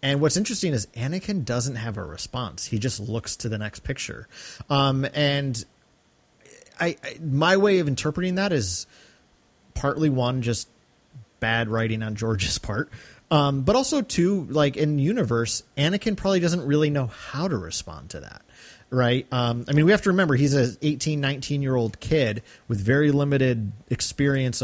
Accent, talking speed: American, 165 wpm